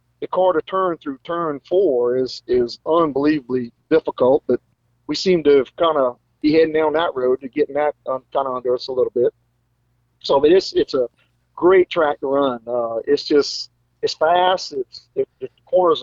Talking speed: 180 wpm